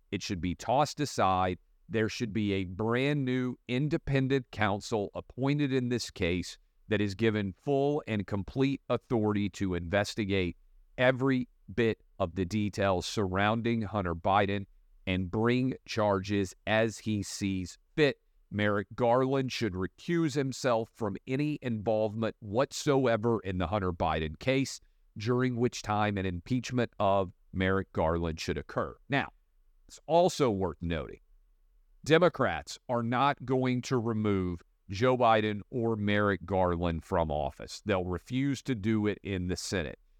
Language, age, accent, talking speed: English, 40-59, American, 135 wpm